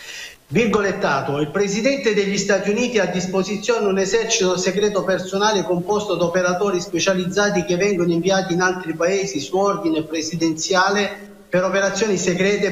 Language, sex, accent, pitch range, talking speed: Italian, male, native, 180-210 Hz, 135 wpm